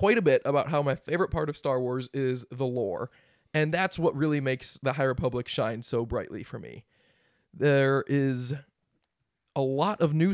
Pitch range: 135-170 Hz